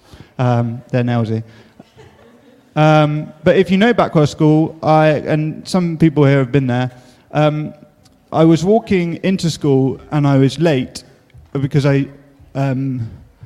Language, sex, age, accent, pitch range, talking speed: English, male, 30-49, British, 125-155 Hz, 140 wpm